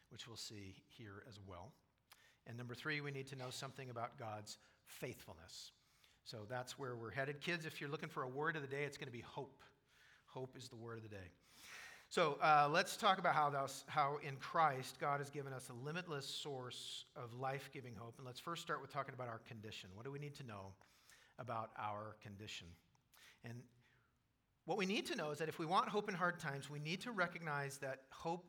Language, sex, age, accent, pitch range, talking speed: English, male, 50-69, American, 120-155 Hz, 215 wpm